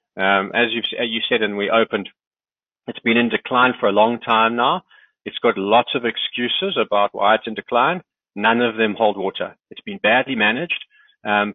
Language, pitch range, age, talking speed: English, 105-125 Hz, 30-49, 195 wpm